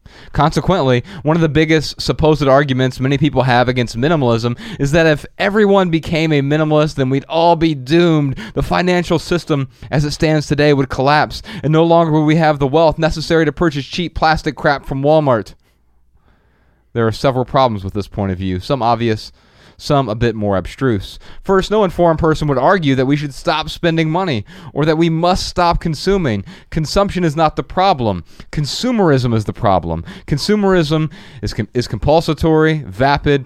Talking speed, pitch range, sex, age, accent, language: 175 wpm, 120-160 Hz, male, 30-49, American, English